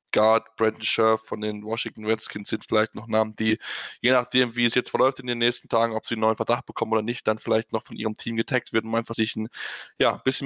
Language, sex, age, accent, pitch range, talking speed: German, male, 10-29, German, 115-145 Hz, 255 wpm